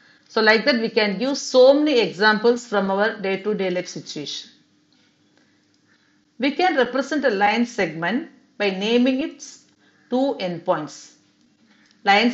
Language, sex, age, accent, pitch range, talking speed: English, female, 50-69, Indian, 195-265 Hz, 120 wpm